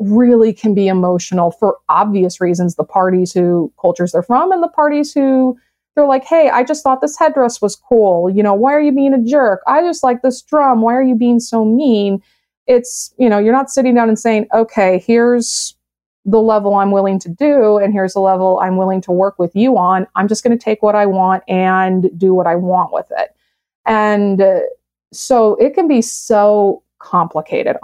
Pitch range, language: 185-230 Hz, English